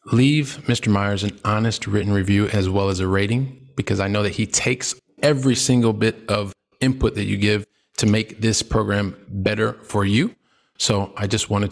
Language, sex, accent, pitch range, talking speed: English, male, American, 105-120 Hz, 190 wpm